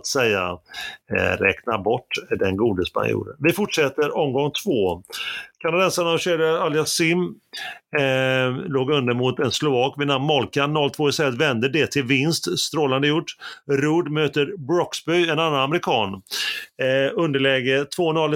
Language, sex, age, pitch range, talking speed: Swedish, male, 30-49, 135-160 Hz, 130 wpm